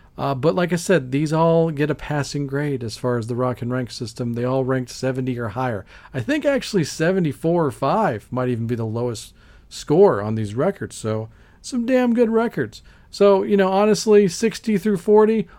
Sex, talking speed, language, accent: male, 200 wpm, English, American